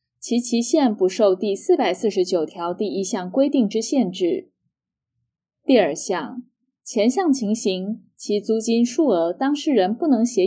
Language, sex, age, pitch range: Chinese, female, 10-29, 200-275 Hz